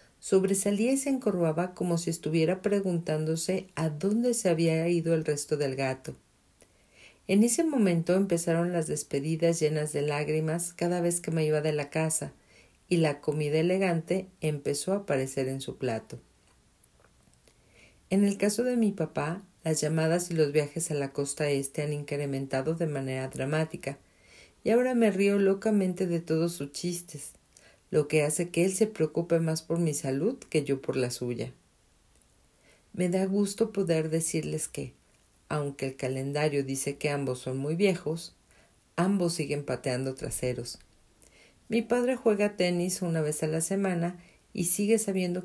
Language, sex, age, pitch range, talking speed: Spanish, female, 50-69, 145-185 Hz, 160 wpm